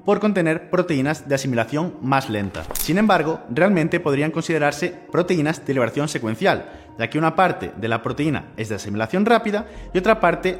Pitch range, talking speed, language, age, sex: 115-180 Hz, 170 wpm, Spanish, 30-49, male